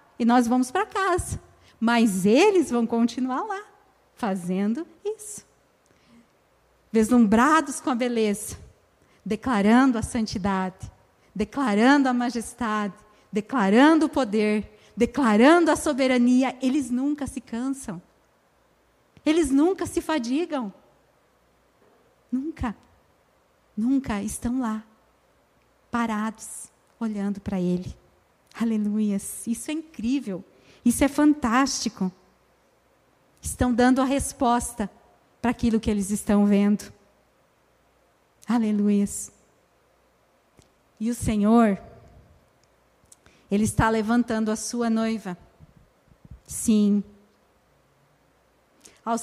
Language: Portuguese